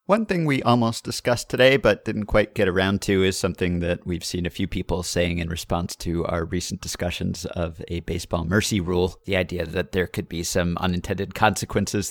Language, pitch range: English, 90-115 Hz